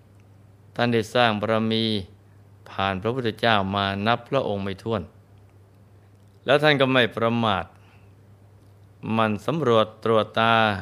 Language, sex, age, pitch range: Thai, male, 20-39, 100-110 Hz